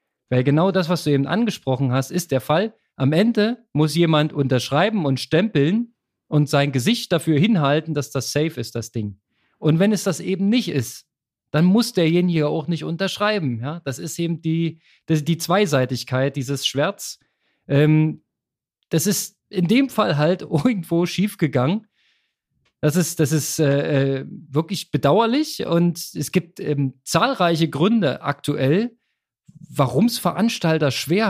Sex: male